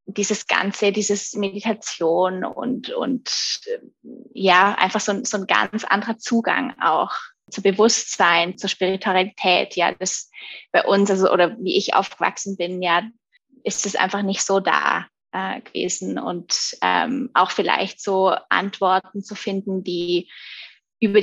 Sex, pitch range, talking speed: female, 185-210 Hz, 135 wpm